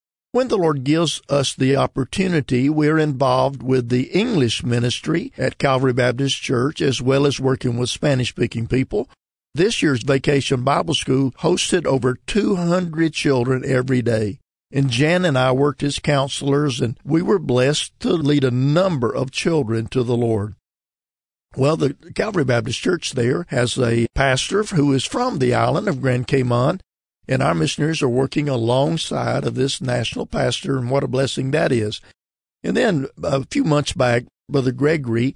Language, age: English, 50-69